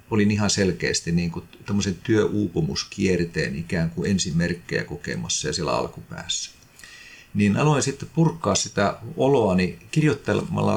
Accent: native